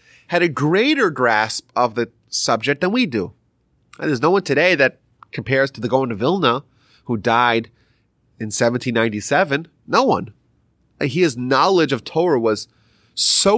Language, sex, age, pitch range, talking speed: English, male, 30-49, 120-180 Hz, 155 wpm